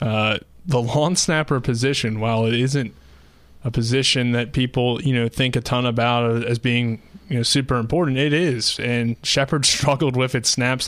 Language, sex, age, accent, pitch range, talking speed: English, male, 20-39, American, 115-130 Hz, 175 wpm